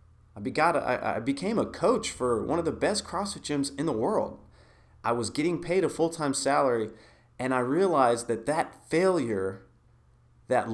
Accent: American